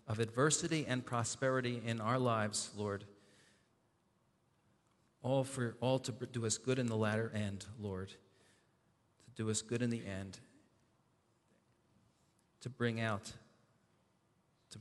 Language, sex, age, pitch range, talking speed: English, male, 40-59, 105-120 Hz, 125 wpm